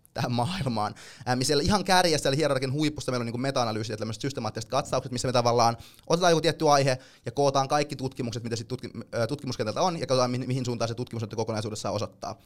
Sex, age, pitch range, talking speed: male, 20-39, 120-145 Hz, 195 wpm